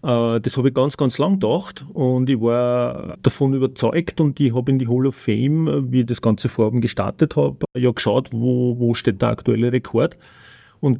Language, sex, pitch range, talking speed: German, male, 120-140 Hz, 195 wpm